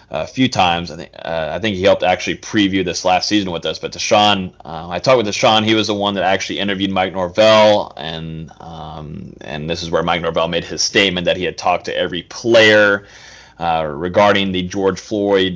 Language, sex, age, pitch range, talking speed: English, male, 30-49, 85-105 Hz, 215 wpm